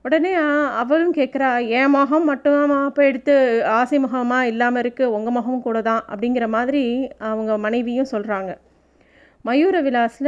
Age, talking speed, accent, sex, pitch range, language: 30-49, 135 wpm, native, female, 220-265 Hz, Tamil